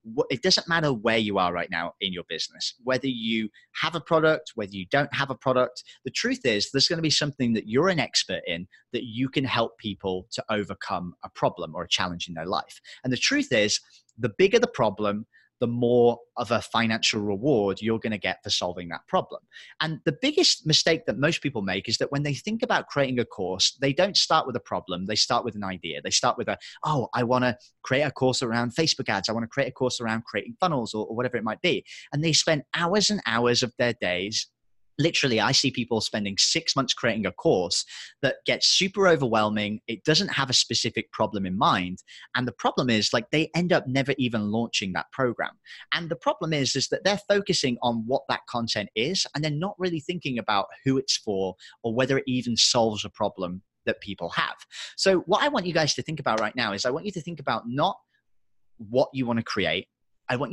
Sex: male